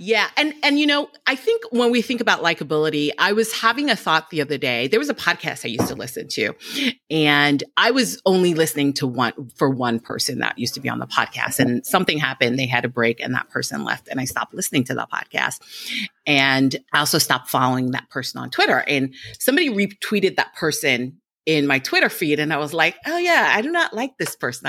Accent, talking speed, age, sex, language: American, 230 wpm, 40-59, female, English